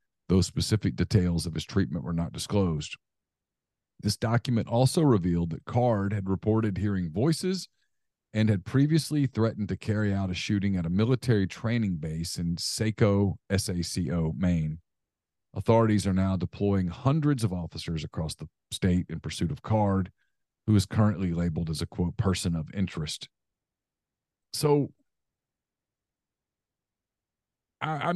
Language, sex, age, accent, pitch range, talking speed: English, male, 40-59, American, 95-130 Hz, 135 wpm